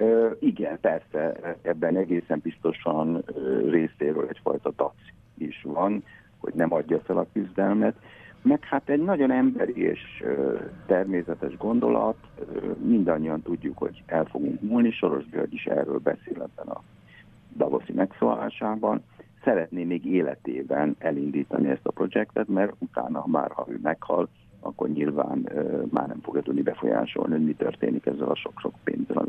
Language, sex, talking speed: Hungarian, male, 125 wpm